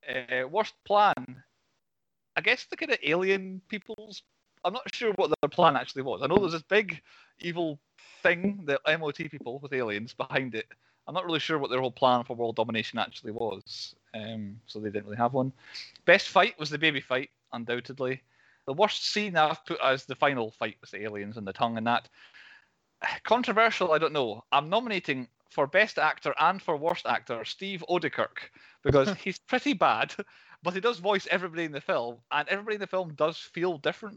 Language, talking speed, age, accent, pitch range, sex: English, 195 wpm, 30-49, British, 120-180 Hz, male